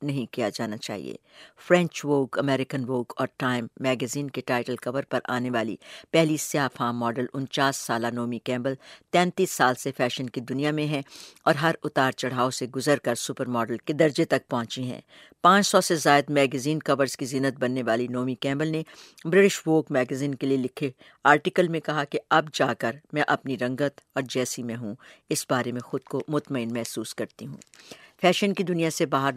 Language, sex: English, female